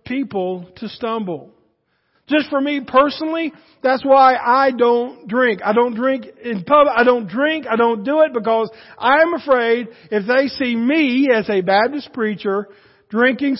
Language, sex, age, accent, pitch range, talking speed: English, male, 50-69, American, 200-245 Hz, 165 wpm